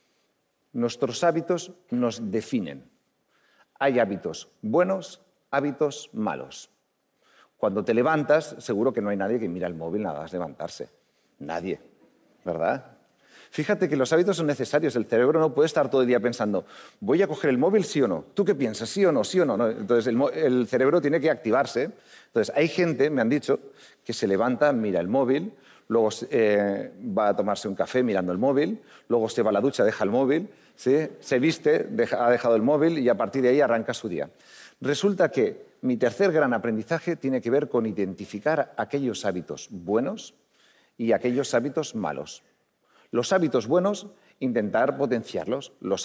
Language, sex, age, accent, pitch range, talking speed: Spanish, male, 40-59, Spanish, 115-165 Hz, 175 wpm